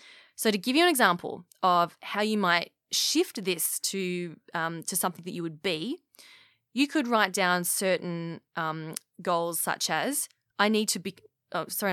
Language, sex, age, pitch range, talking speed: English, female, 20-39, 185-265 Hz, 165 wpm